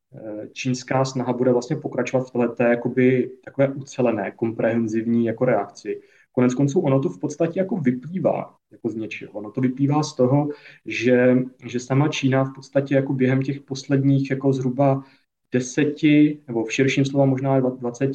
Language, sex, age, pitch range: Czech, male, 20-39, 120-140 Hz